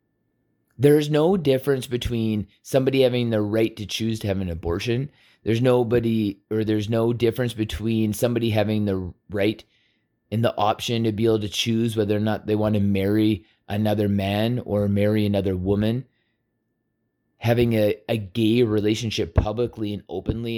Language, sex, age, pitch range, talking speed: English, male, 30-49, 105-120 Hz, 160 wpm